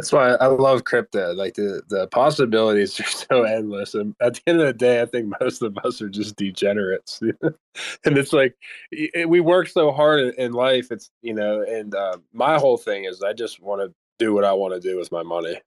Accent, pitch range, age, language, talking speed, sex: American, 100-140 Hz, 20-39, English, 225 wpm, male